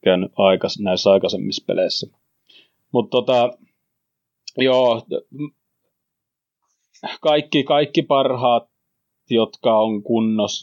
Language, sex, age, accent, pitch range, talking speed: Finnish, male, 30-49, native, 100-130 Hz, 80 wpm